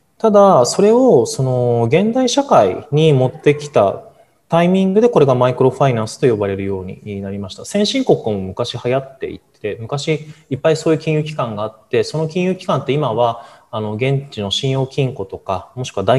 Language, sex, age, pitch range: Japanese, male, 20-39, 110-160 Hz